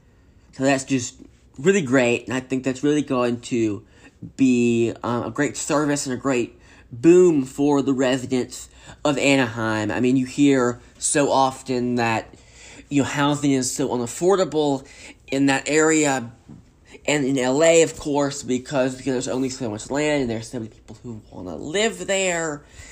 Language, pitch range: English, 120-145 Hz